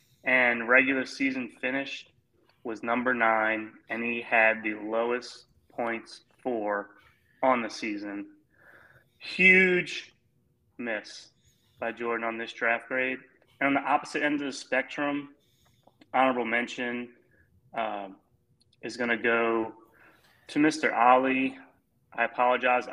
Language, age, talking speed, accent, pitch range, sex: English, 30-49, 120 wpm, American, 115-135 Hz, male